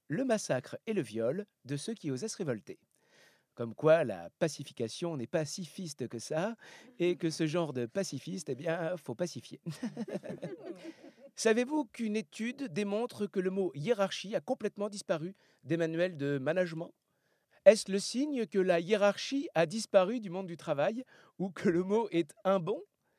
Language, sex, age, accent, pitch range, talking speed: French, male, 50-69, French, 145-220 Hz, 170 wpm